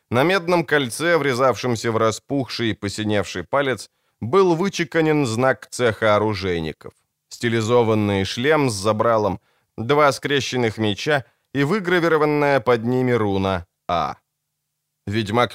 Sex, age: male, 20-39